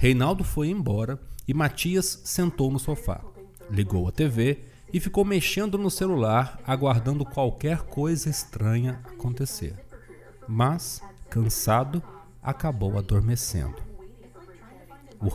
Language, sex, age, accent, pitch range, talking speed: Portuguese, male, 40-59, Brazilian, 95-140 Hz, 100 wpm